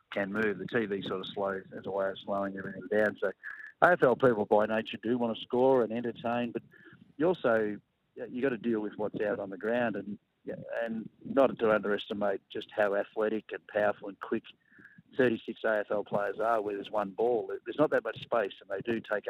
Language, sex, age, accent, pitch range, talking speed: English, male, 50-69, Australian, 105-120 Hz, 210 wpm